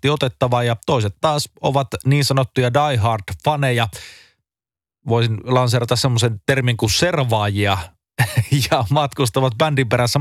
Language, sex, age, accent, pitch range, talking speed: Finnish, male, 30-49, native, 115-140 Hz, 105 wpm